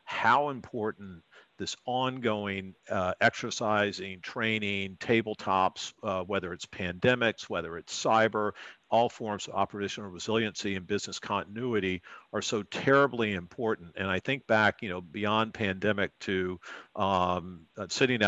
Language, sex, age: English, male, 50-69